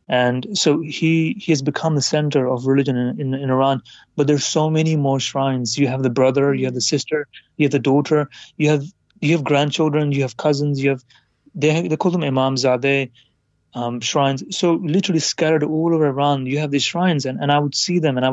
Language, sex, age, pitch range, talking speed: English, male, 30-49, 135-160 Hz, 225 wpm